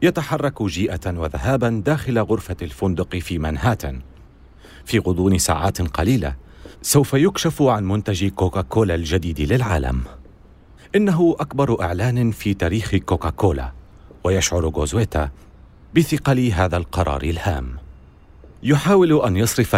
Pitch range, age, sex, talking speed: 85-130 Hz, 40-59, male, 105 wpm